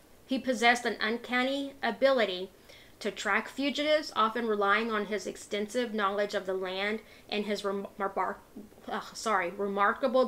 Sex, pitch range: female, 200-250 Hz